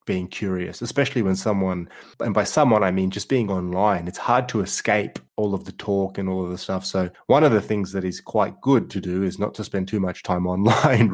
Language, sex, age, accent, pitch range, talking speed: English, male, 20-39, Australian, 95-115 Hz, 240 wpm